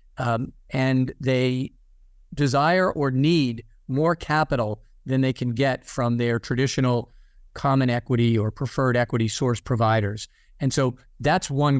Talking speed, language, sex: 130 wpm, English, male